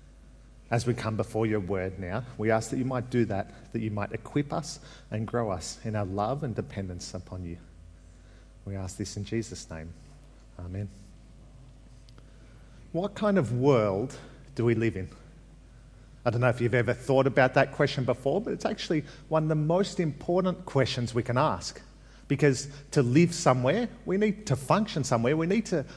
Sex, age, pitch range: male, 40-59, 115-145 Hz